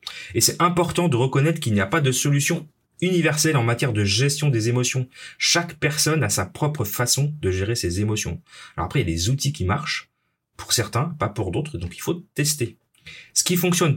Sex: male